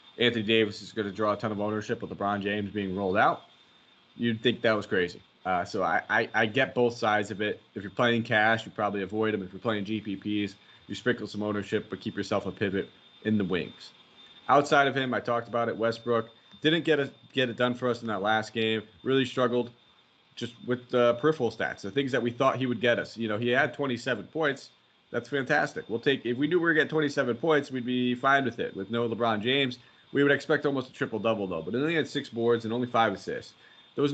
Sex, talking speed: male, 245 wpm